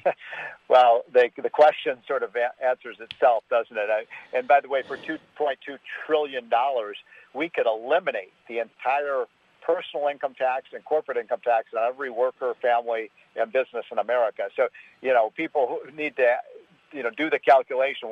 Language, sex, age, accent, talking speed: English, male, 50-69, American, 170 wpm